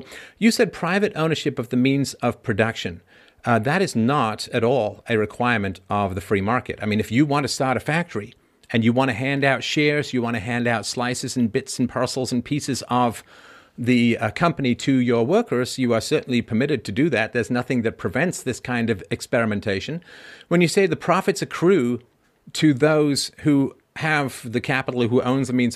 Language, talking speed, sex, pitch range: English, 205 wpm, male, 115-140 Hz